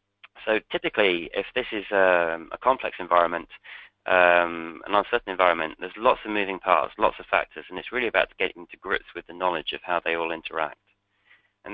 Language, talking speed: English, 200 wpm